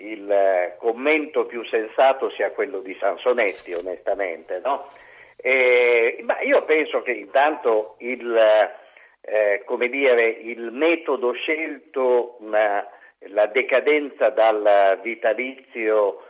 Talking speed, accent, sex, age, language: 105 wpm, native, male, 50-69, Italian